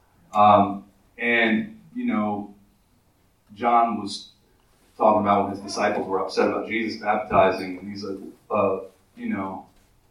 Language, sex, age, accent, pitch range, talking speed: English, male, 30-49, American, 100-130 Hz, 135 wpm